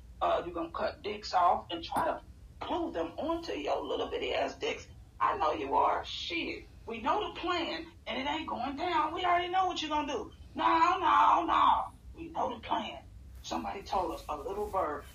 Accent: American